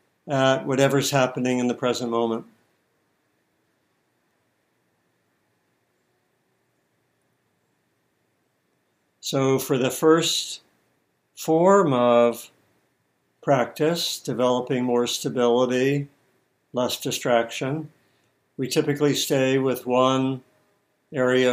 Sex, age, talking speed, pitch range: male, 60-79, 70 wpm, 120-135 Hz